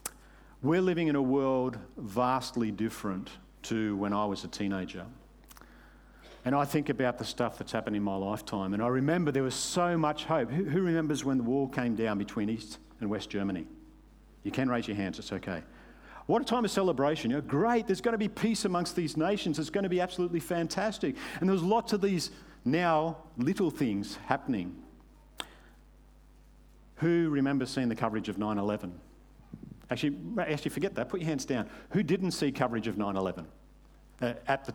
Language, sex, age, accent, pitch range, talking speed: English, male, 50-69, Australian, 115-180 Hz, 180 wpm